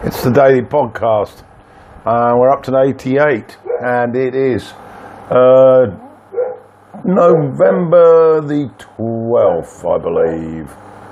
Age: 50-69